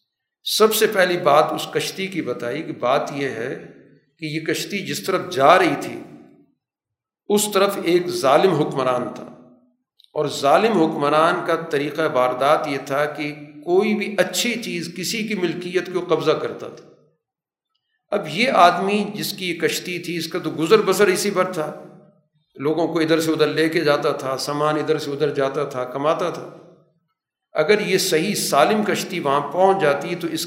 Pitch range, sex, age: 150-185 Hz, male, 50-69